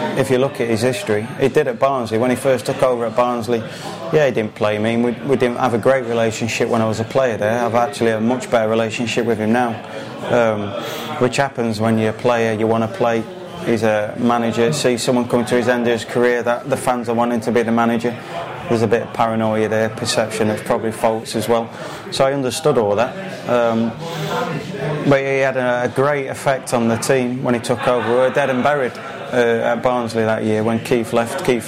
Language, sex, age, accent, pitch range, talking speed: English, male, 20-39, British, 115-130 Hz, 235 wpm